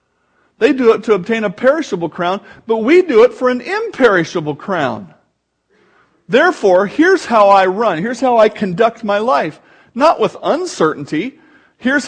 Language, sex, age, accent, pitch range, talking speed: English, male, 50-69, American, 170-235 Hz, 155 wpm